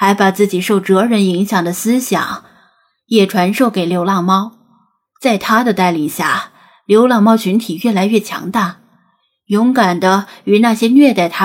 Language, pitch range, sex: Chinese, 195-240 Hz, female